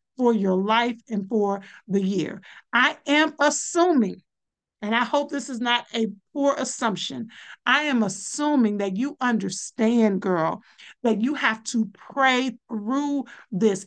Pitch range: 210-255 Hz